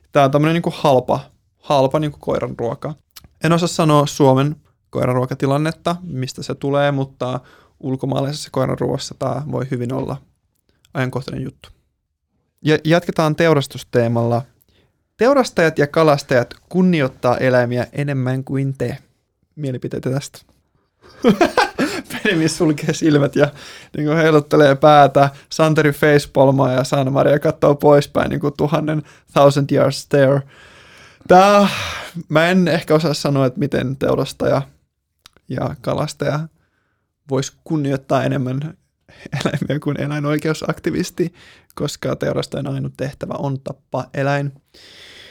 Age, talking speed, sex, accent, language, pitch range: 20-39, 110 wpm, male, native, Finnish, 130-155 Hz